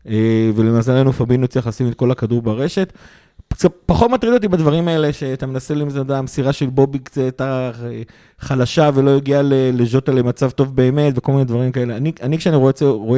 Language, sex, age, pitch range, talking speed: Hebrew, male, 30-49, 115-135 Hz, 175 wpm